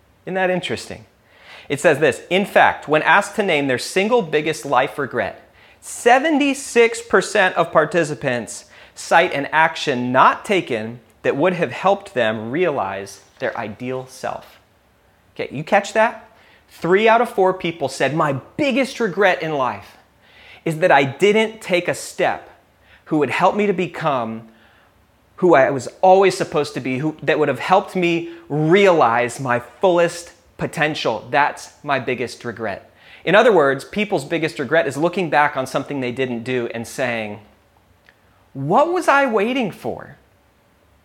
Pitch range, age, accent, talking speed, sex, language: 130-190 Hz, 30-49, American, 150 wpm, male, English